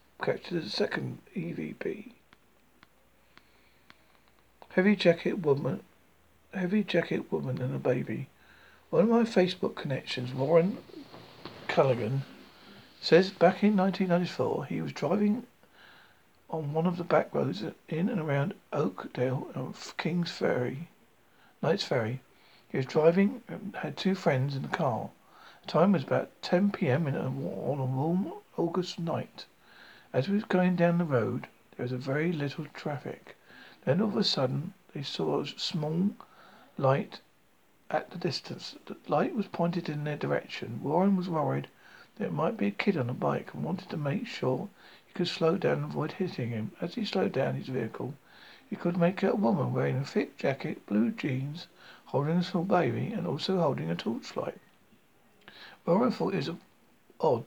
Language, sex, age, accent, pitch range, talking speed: English, male, 50-69, British, 140-185 Hz, 165 wpm